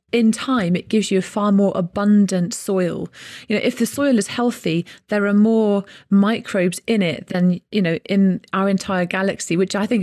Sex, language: female, English